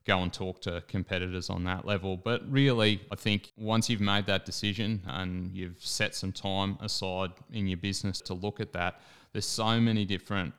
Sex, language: male, English